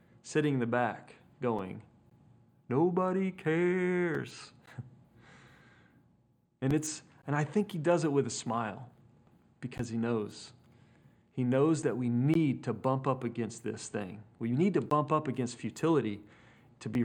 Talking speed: 145 wpm